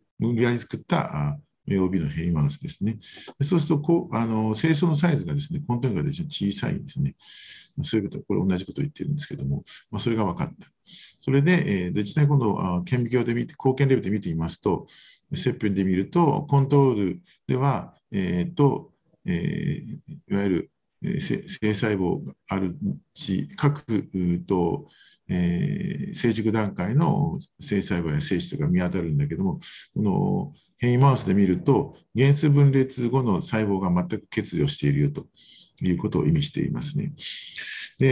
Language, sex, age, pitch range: Japanese, male, 50-69, 95-145 Hz